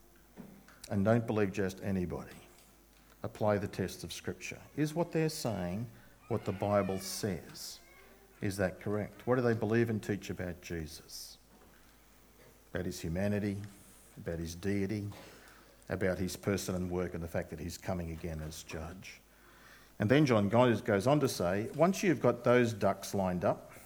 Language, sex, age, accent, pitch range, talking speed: English, male, 50-69, Australian, 95-125 Hz, 160 wpm